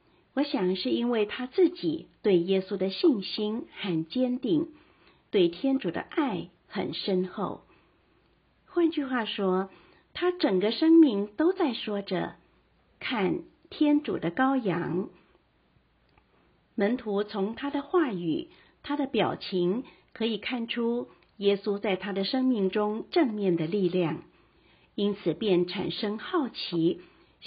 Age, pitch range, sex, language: 50-69, 180-270 Hz, female, Chinese